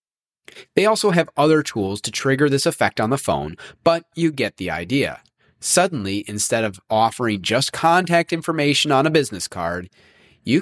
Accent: American